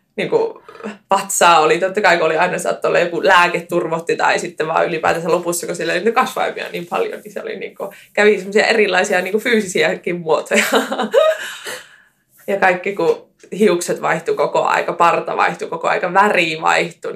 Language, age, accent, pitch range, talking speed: Finnish, 20-39, native, 185-240 Hz, 155 wpm